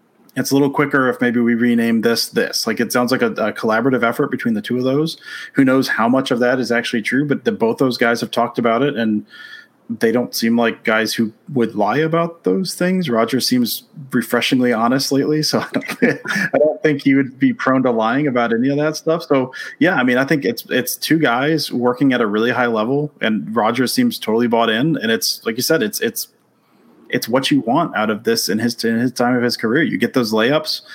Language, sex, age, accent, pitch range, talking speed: English, male, 30-49, American, 120-155 Hz, 235 wpm